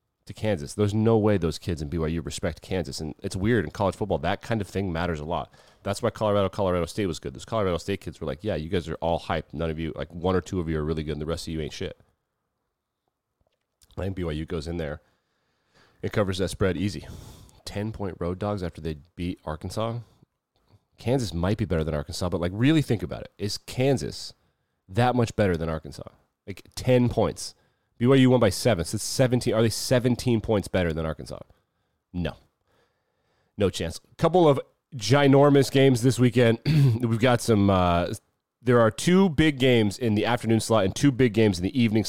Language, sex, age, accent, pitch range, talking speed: English, male, 30-49, American, 85-120 Hz, 210 wpm